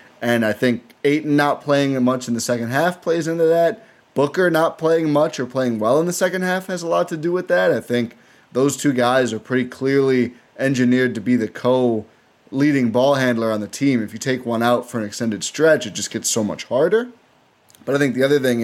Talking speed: 230 wpm